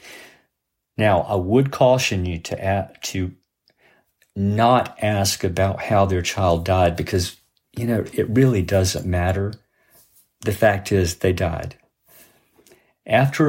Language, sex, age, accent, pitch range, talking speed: English, male, 50-69, American, 95-125 Hz, 125 wpm